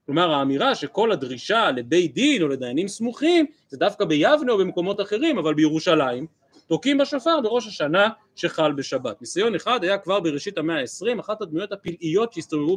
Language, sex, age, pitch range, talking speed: Hebrew, male, 30-49, 150-210 Hz, 160 wpm